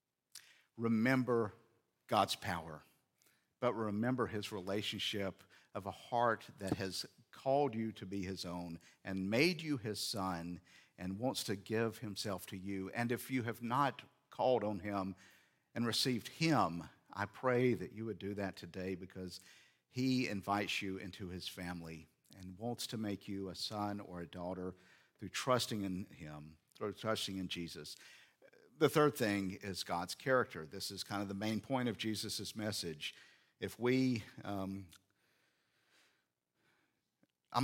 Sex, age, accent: male, 50-69, American